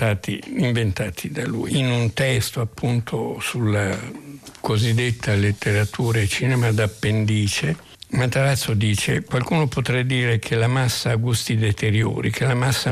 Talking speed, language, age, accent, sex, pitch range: 125 wpm, Italian, 60-79, native, male, 110-140 Hz